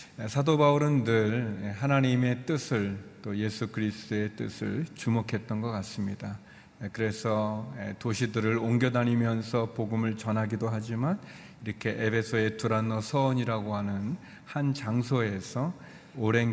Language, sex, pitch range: Korean, male, 105-125 Hz